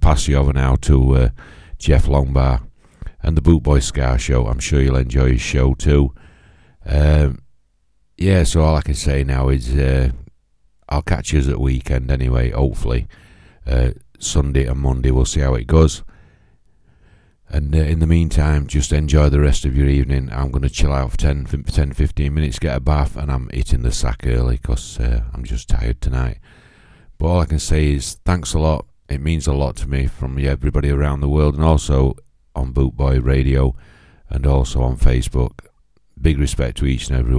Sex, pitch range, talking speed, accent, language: male, 65-80 Hz, 195 wpm, British, English